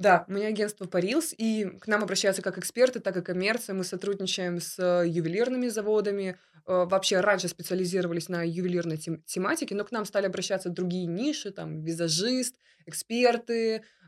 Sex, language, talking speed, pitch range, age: female, Russian, 150 wpm, 180-220 Hz, 20-39